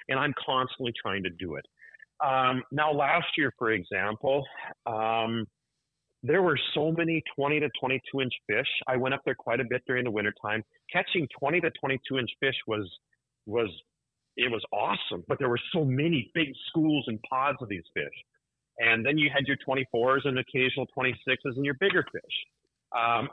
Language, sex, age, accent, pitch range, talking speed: English, male, 40-59, American, 120-155 Hz, 170 wpm